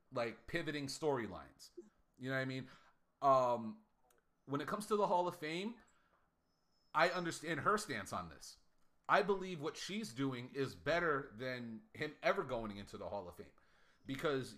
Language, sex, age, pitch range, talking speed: English, male, 30-49, 135-210 Hz, 165 wpm